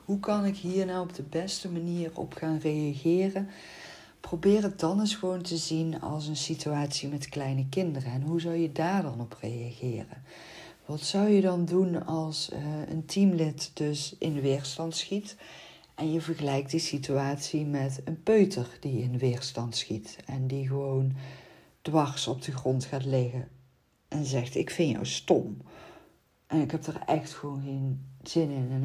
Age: 50-69